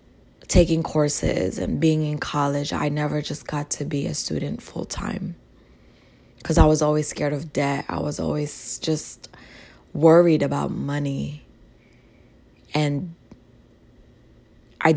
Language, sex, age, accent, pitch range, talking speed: English, female, 20-39, American, 135-155 Hz, 125 wpm